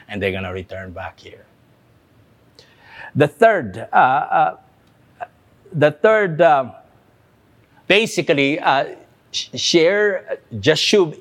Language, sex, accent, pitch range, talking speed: English, male, Filipino, 120-170 Hz, 90 wpm